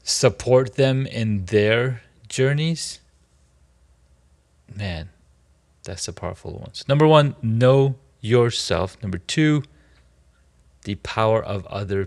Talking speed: 105 wpm